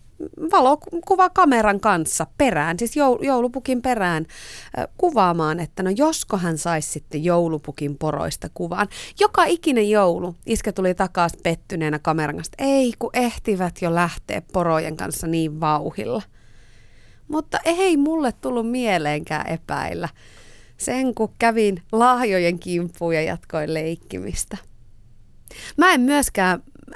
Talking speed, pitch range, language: 115 wpm, 160-235 Hz, Finnish